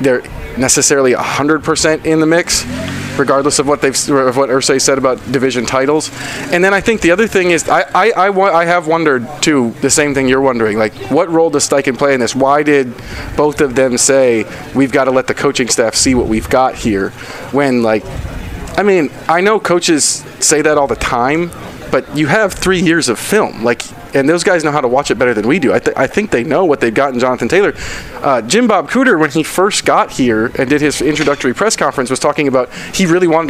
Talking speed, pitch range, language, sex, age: 235 wpm, 130-160 Hz, English, male, 30-49